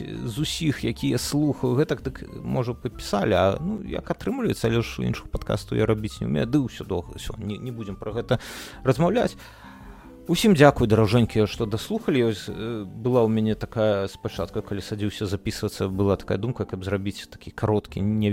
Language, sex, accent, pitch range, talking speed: Russian, male, native, 100-130 Hz, 170 wpm